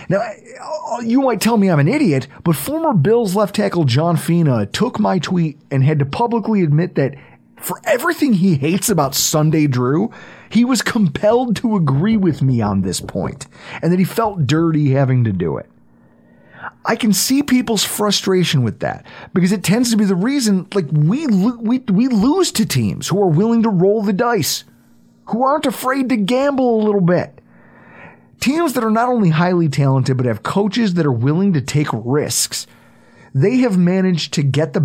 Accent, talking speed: American, 190 wpm